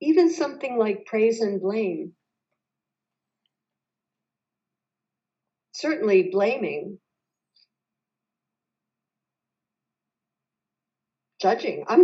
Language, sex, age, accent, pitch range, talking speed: English, female, 50-69, American, 205-300 Hz, 50 wpm